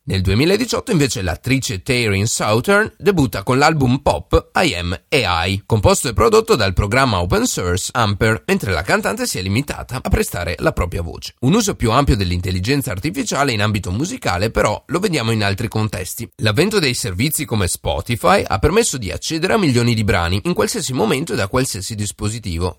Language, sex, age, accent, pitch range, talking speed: Italian, male, 30-49, native, 95-140 Hz, 175 wpm